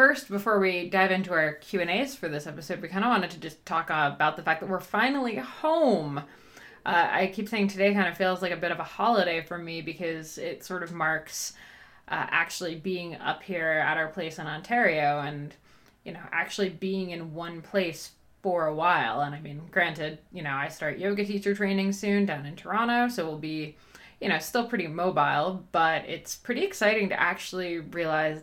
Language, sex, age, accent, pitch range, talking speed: English, female, 20-39, American, 160-195 Hz, 205 wpm